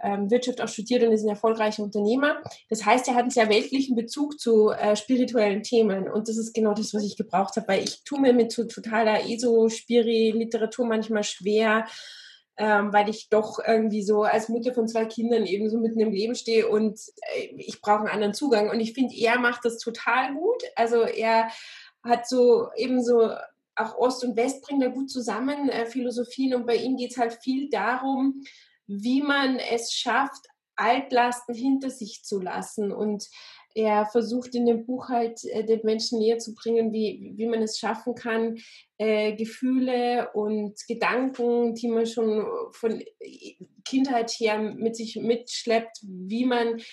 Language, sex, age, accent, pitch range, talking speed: German, female, 20-39, German, 220-250 Hz, 175 wpm